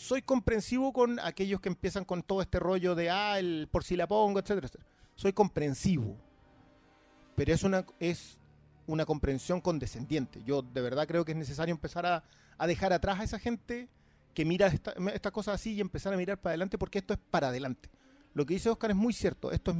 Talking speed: 210 wpm